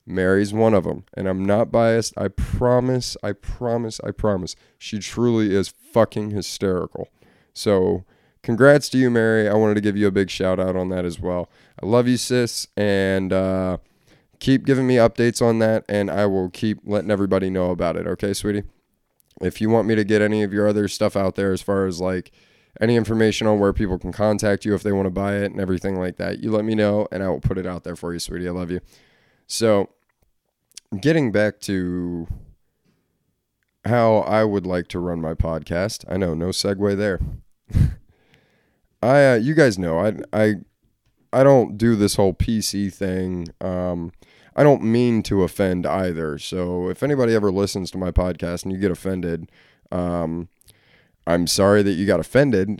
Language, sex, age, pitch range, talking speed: English, male, 20-39, 90-110 Hz, 190 wpm